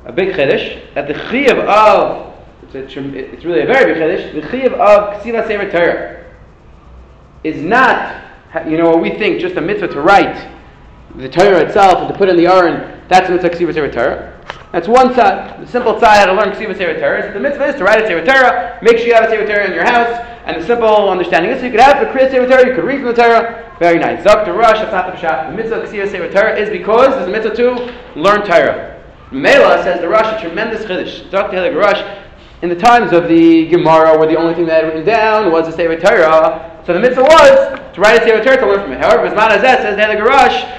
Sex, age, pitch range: male, 30-49, 175-245 Hz